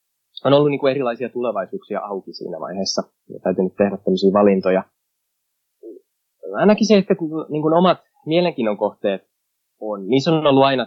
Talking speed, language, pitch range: 155 wpm, Finnish, 100-145 Hz